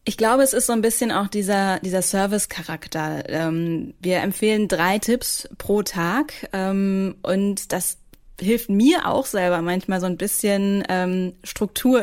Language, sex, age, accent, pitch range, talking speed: German, female, 20-39, German, 180-210 Hz, 140 wpm